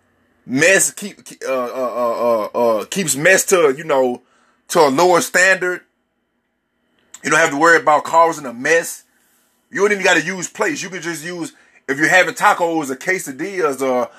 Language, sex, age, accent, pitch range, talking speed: English, male, 30-49, American, 150-185 Hz, 180 wpm